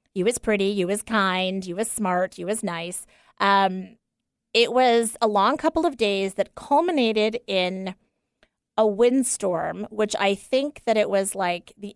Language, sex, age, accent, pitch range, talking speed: English, female, 30-49, American, 185-225 Hz, 165 wpm